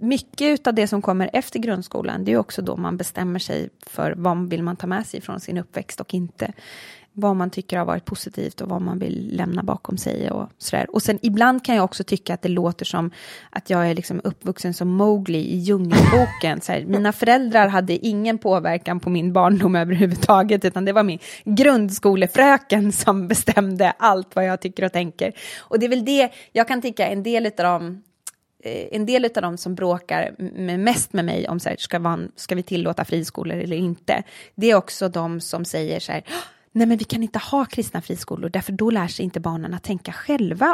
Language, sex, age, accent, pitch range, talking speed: English, female, 20-39, Swedish, 180-225 Hz, 200 wpm